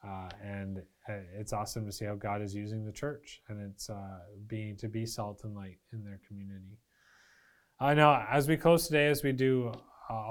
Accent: American